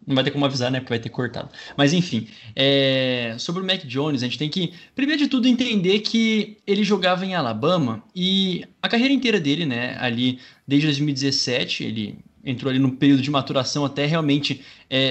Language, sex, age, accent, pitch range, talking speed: Portuguese, male, 20-39, Brazilian, 135-210 Hz, 195 wpm